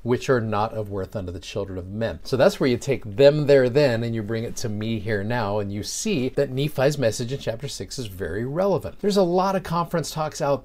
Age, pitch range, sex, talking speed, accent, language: 40-59, 110-140 Hz, male, 255 wpm, American, English